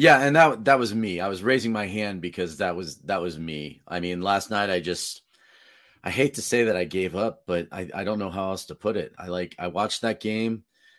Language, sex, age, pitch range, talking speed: English, male, 30-49, 90-110 Hz, 255 wpm